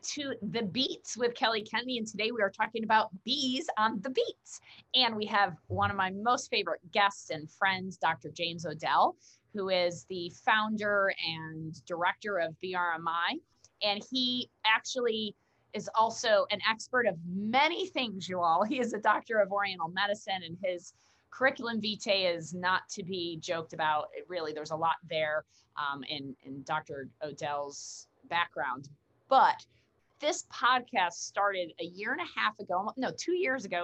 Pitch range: 175-245 Hz